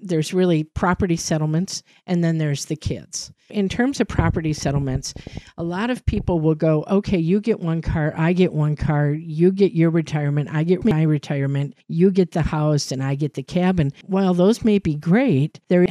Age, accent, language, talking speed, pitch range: 50-69, American, English, 195 wpm, 145-180 Hz